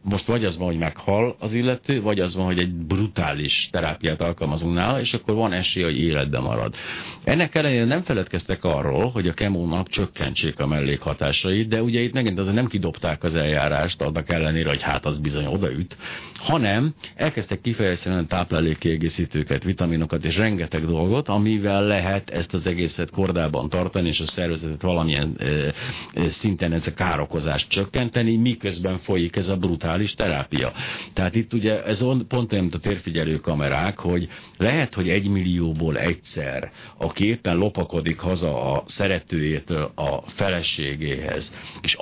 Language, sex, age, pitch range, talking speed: Hungarian, male, 60-79, 80-105 Hz, 150 wpm